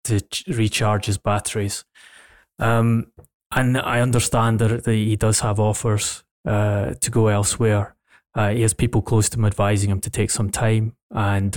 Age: 20-39